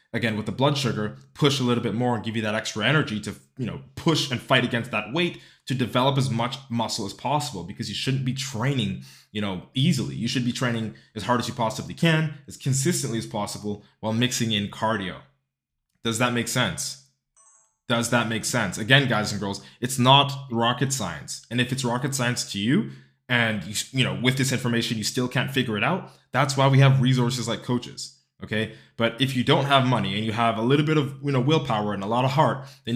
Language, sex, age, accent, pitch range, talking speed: English, male, 20-39, American, 110-135 Hz, 225 wpm